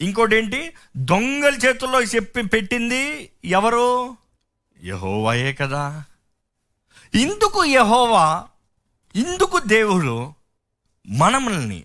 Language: Telugu